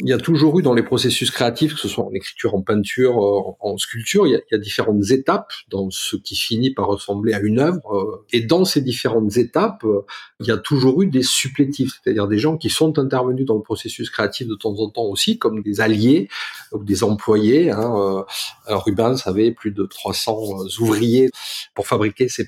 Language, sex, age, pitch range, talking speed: French, male, 40-59, 105-145 Hz, 210 wpm